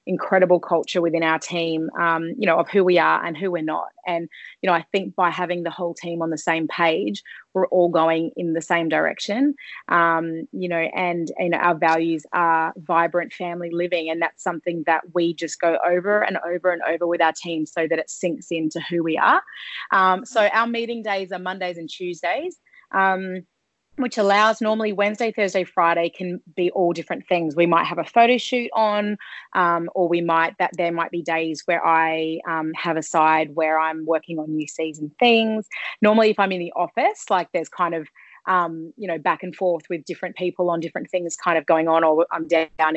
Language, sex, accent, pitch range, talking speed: English, female, Australian, 165-185 Hz, 210 wpm